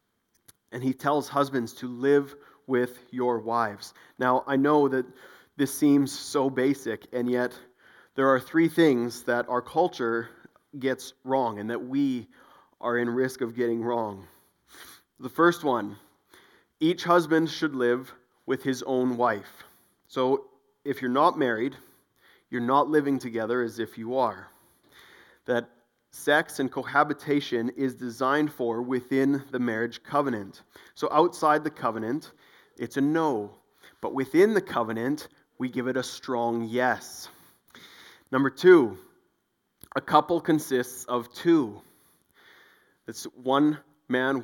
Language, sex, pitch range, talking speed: English, male, 120-145 Hz, 135 wpm